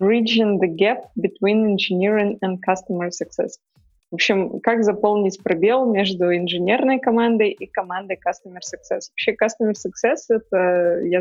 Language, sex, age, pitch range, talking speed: Russian, female, 20-39, 180-215 Hz, 125 wpm